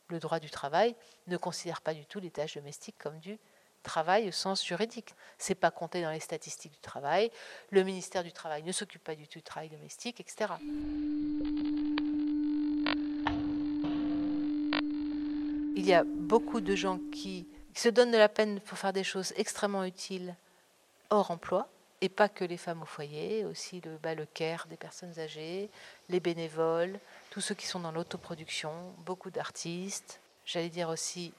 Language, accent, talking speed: French, French, 170 wpm